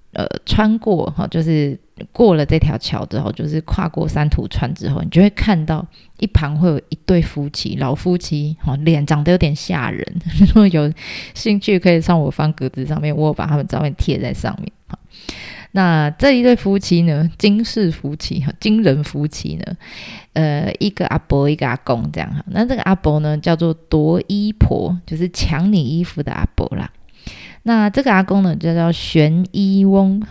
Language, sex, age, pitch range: Chinese, female, 20-39, 155-190 Hz